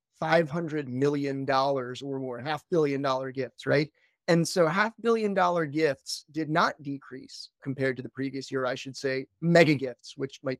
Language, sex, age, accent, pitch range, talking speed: English, male, 30-49, American, 135-170 Hz, 165 wpm